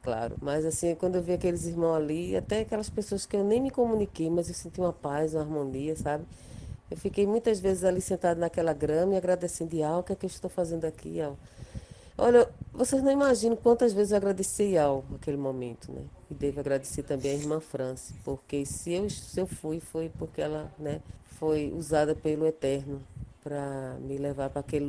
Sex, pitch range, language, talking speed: female, 145-195 Hz, Portuguese, 200 wpm